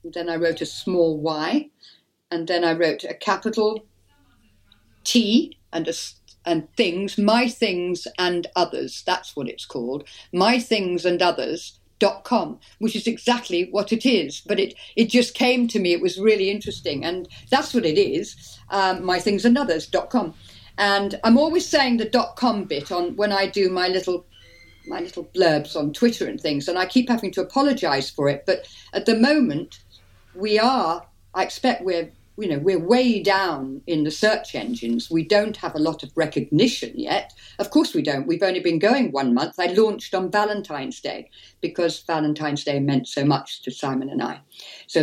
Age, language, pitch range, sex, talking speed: 50-69, English, 165-225 Hz, female, 185 wpm